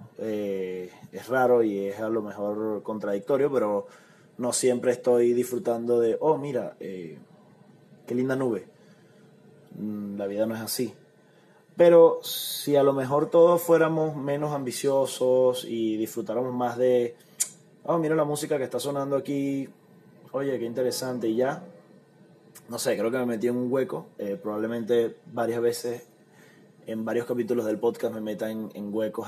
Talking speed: 155 wpm